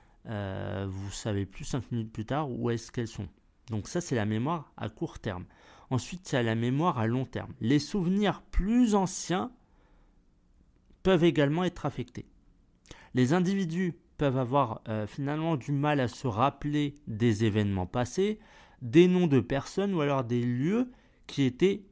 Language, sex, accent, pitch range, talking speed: French, male, French, 105-150 Hz, 165 wpm